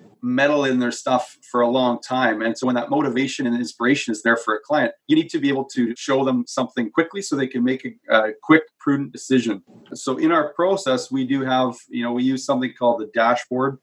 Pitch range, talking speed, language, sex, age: 115-135 Hz, 235 wpm, English, male, 30-49